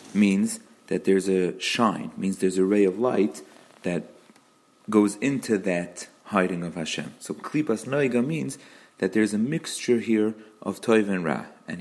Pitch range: 95-130 Hz